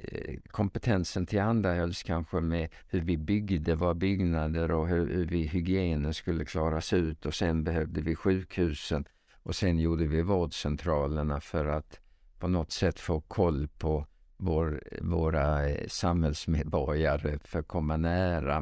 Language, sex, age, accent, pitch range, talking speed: Swedish, male, 50-69, Norwegian, 75-95 Hz, 140 wpm